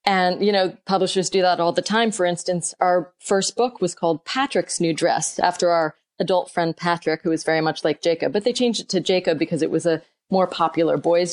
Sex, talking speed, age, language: female, 230 wpm, 30-49, English